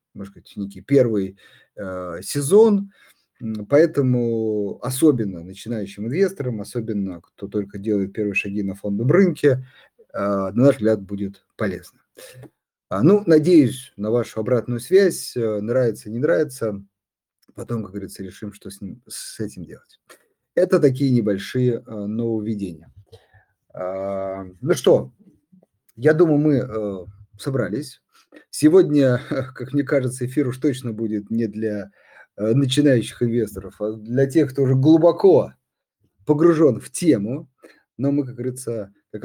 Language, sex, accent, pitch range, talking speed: Russian, male, native, 105-140 Hz, 130 wpm